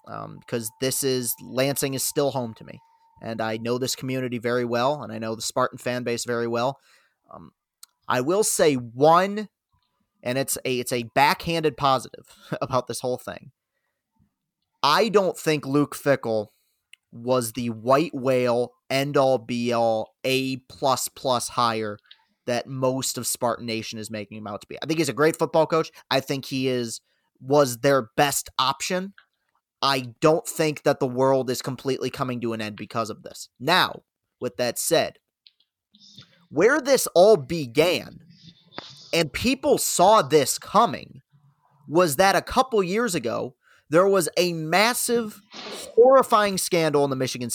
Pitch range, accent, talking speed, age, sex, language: 120-165 Hz, American, 160 wpm, 30-49, male, English